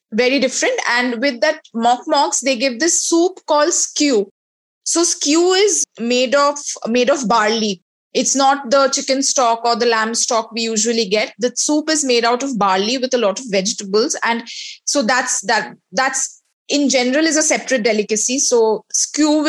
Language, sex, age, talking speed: English, female, 20-39, 180 wpm